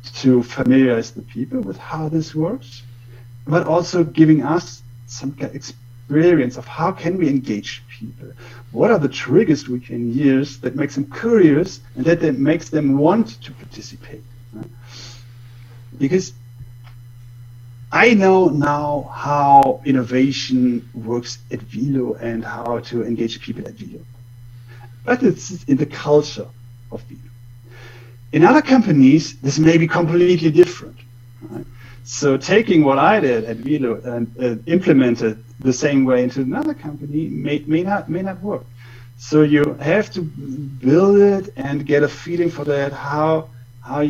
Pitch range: 120-155 Hz